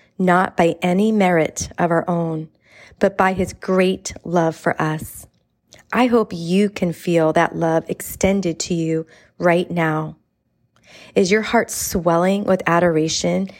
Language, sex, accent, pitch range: English, female, American, 165-200 Hz